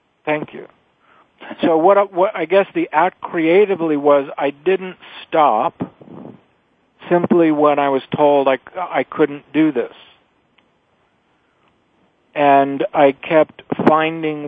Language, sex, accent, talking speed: English, male, American, 120 wpm